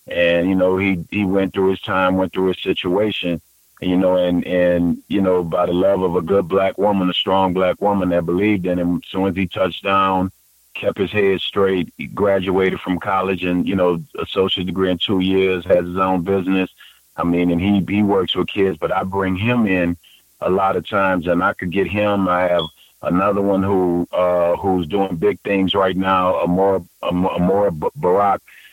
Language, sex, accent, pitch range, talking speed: English, male, American, 90-95 Hz, 210 wpm